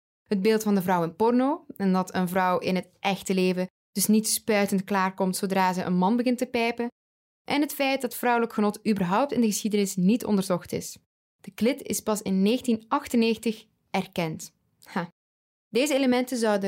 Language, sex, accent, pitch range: English, female, Dutch, 190-230 Hz